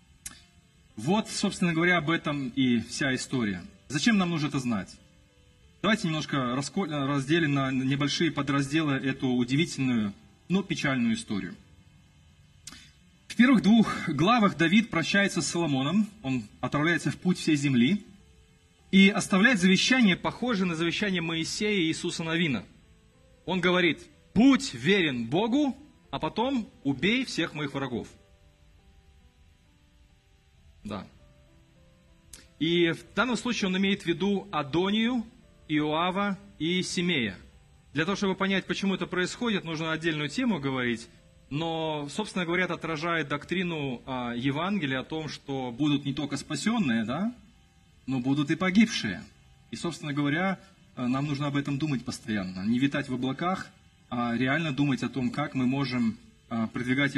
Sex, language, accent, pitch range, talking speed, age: male, Russian, native, 130-190 Hz, 130 wpm, 30-49